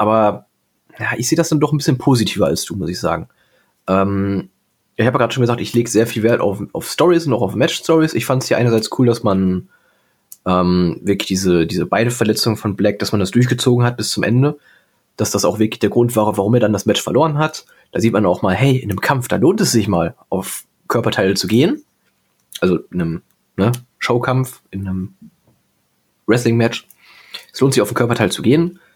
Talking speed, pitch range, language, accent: 220 wpm, 100-125 Hz, German, German